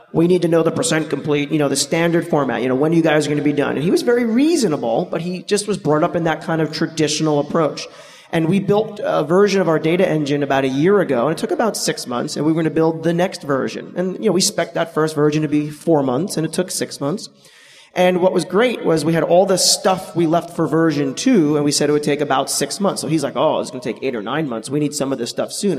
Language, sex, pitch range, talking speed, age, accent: English, male, 145-180 Hz, 295 wpm, 30-49, American